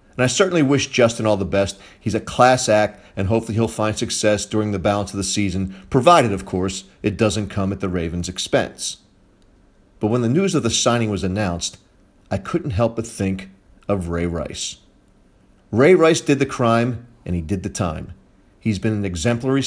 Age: 40-59